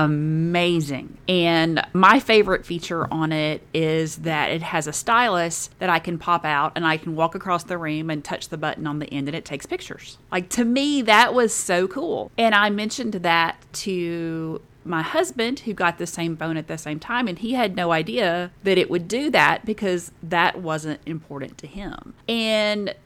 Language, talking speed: English, 200 wpm